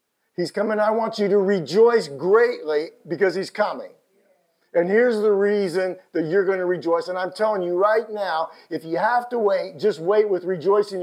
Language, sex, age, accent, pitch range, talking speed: English, male, 50-69, American, 195-265 Hz, 190 wpm